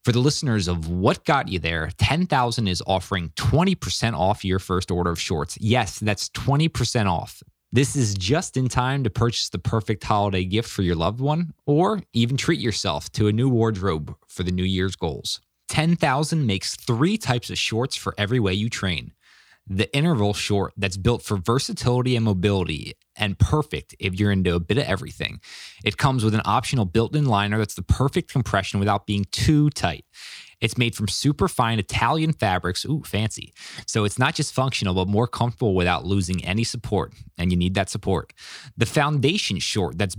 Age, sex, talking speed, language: 20-39, male, 185 wpm, English